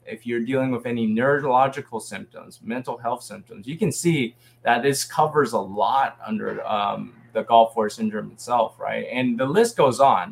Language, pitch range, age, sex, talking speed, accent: English, 120-140 Hz, 20-39, male, 180 wpm, American